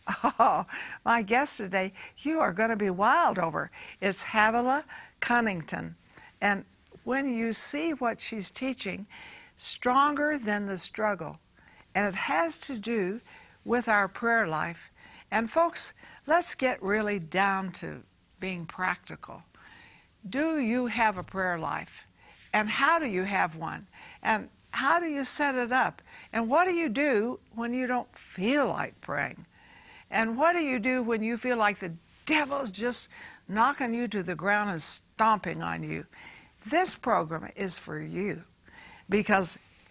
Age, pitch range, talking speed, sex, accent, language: 60-79, 195-270 Hz, 150 wpm, female, American, English